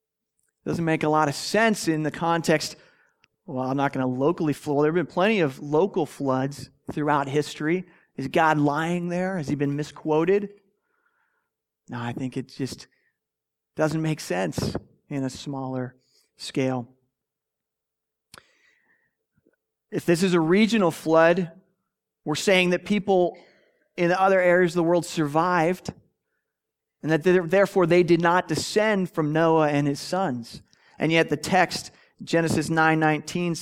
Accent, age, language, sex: American, 30-49, English, male